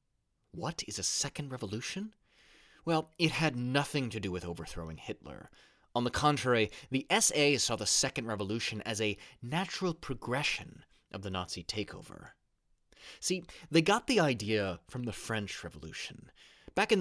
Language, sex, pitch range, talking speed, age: English, male, 100-140 Hz, 150 wpm, 30-49